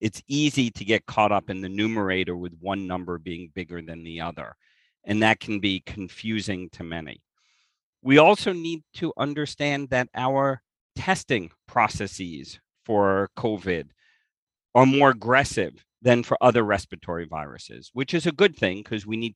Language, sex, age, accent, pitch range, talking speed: English, male, 50-69, American, 95-135 Hz, 160 wpm